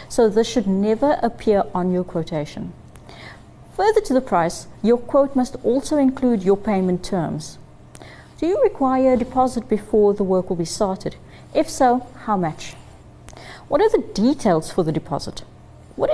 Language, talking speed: English, 160 wpm